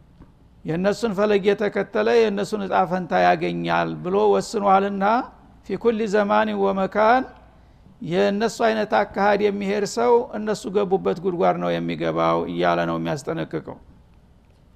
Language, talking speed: Amharic, 90 wpm